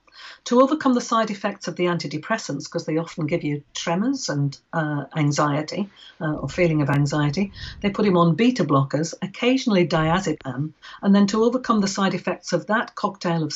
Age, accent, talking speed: 50-69, British, 180 wpm